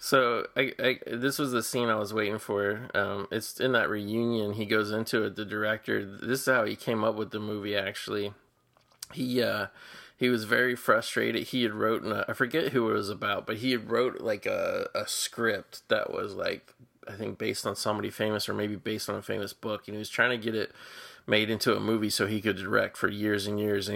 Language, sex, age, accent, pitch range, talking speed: English, male, 20-39, American, 105-115 Hz, 230 wpm